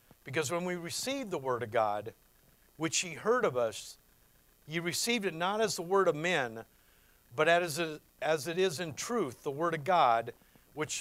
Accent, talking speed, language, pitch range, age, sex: American, 190 wpm, English, 140-185 Hz, 50-69, male